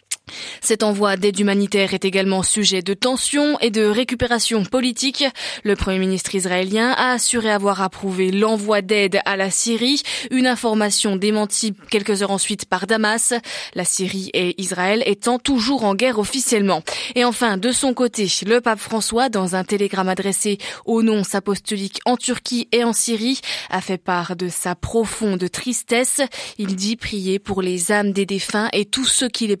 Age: 20-39